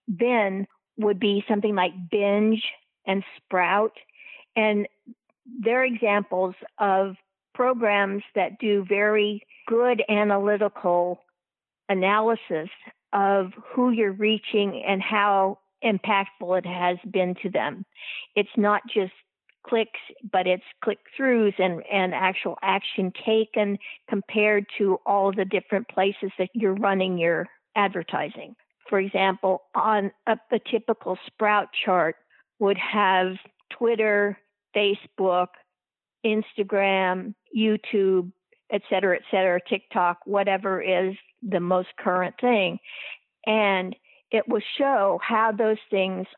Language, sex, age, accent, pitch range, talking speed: English, female, 50-69, American, 190-220 Hz, 110 wpm